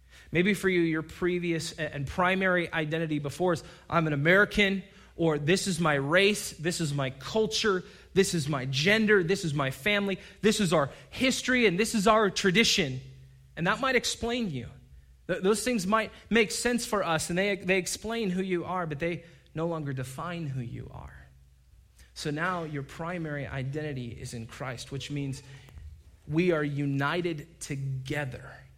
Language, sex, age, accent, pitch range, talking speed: English, male, 30-49, American, 140-190 Hz, 170 wpm